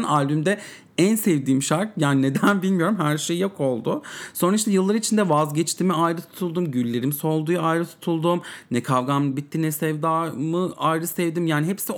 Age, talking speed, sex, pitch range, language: 40-59, 155 wpm, male, 135-190 Hz, English